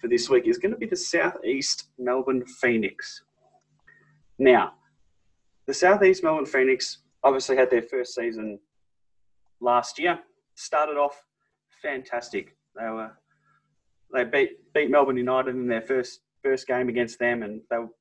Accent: Australian